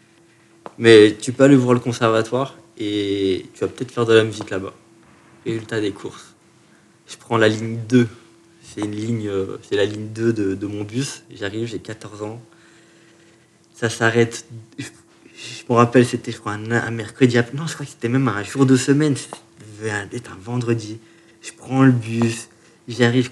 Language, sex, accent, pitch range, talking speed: French, male, French, 115-135 Hz, 180 wpm